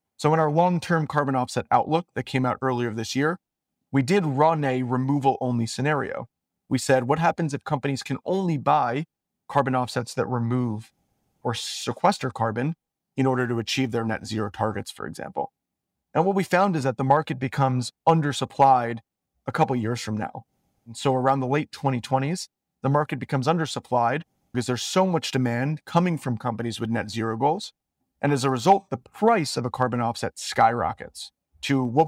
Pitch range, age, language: 125-155 Hz, 30-49, English